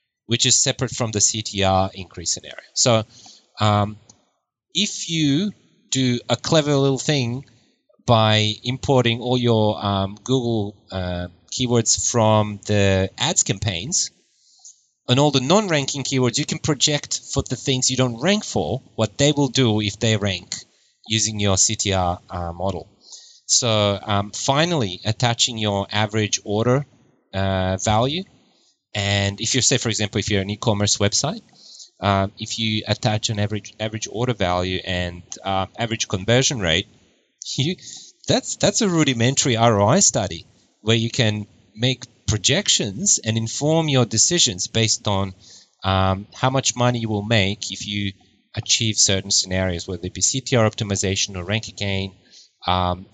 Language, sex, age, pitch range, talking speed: English, male, 30-49, 100-125 Hz, 145 wpm